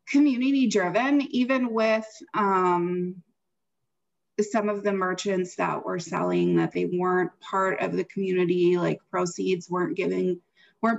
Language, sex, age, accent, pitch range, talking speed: English, female, 20-39, American, 175-205 Hz, 125 wpm